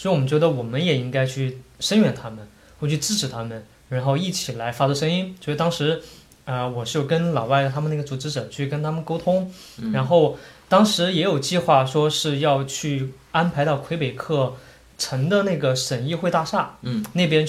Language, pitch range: Chinese, 130-165 Hz